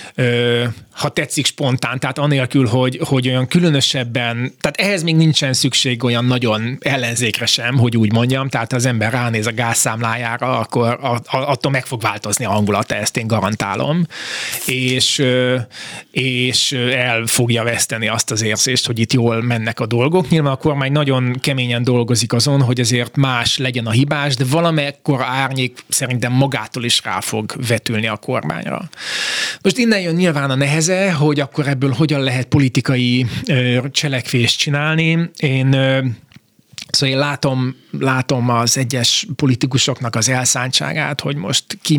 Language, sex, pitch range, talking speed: Hungarian, male, 120-145 Hz, 145 wpm